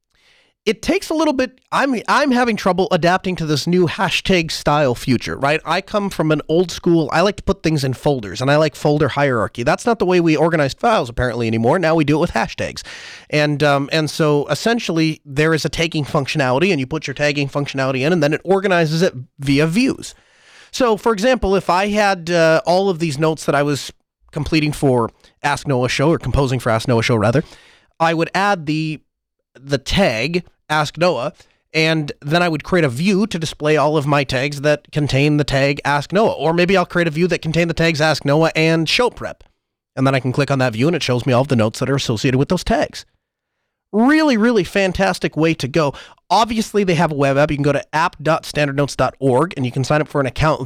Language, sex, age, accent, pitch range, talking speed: English, male, 30-49, American, 140-175 Hz, 225 wpm